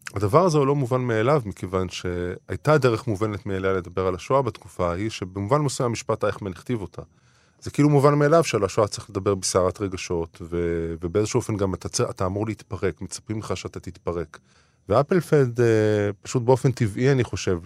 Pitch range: 95-125 Hz